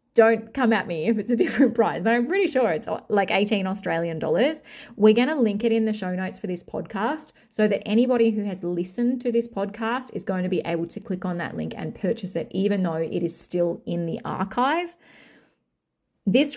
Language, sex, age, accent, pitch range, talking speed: English, female, 30-49, Australian, 185-225 Hz, 220 wpm